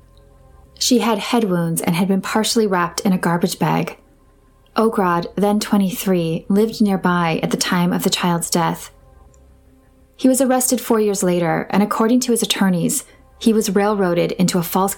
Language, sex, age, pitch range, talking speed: English, female, 30-49, 170-215 Hz, 170 wpm